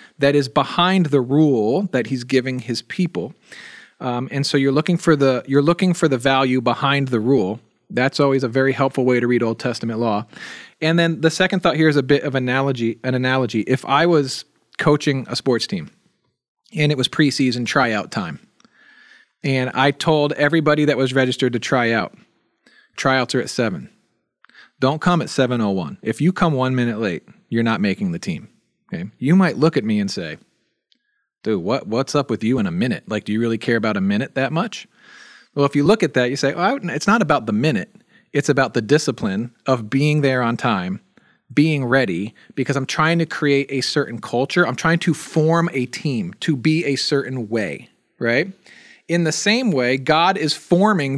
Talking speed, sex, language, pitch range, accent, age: 200 wpm, male, English, 130-165 Hz, American, 40-59